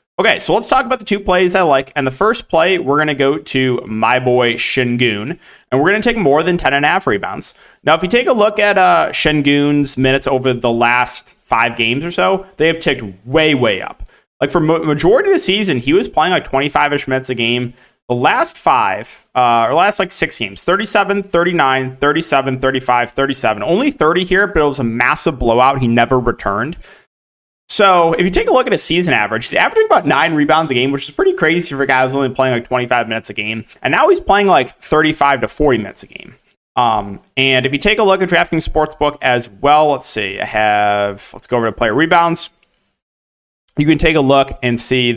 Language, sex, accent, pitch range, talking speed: English, male, American, 125-170 Hz, 225 wpm